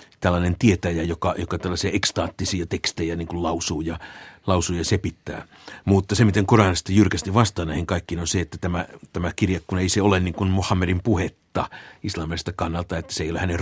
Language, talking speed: Finnish, 180 wpm